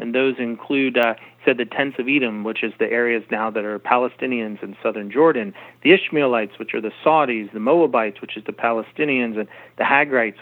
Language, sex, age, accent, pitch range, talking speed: English, male, 40-59, American, 115-135 Hz, 200 wpm